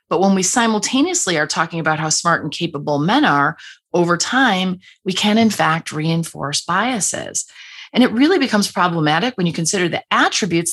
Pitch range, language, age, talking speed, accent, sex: 165-230 Hz, English, 30-49, 175 wpm, American, female